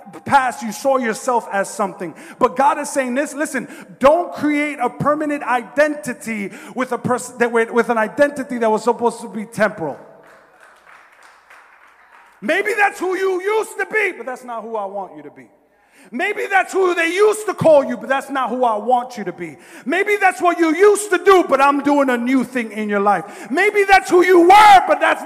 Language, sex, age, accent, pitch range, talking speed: English, male, 30-49, American, 185-295 Hz, 205 wpm